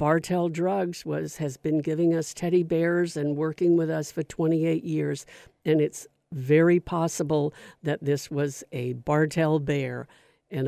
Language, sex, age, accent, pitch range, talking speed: English, female, 60-79, American, 145-165 Hz, 150 wpm